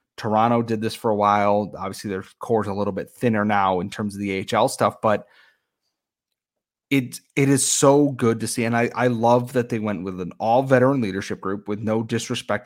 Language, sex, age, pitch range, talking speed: English, male, 30-49, 100-115 Hz, 210 wpm